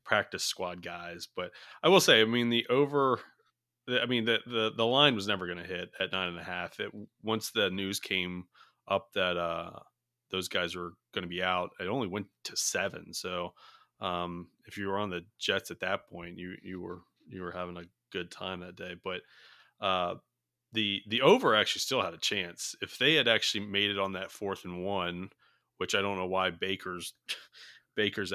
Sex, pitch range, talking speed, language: male, 90-110 Hz, 205 wpm, English